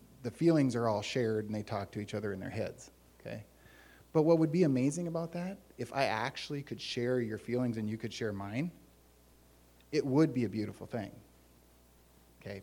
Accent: American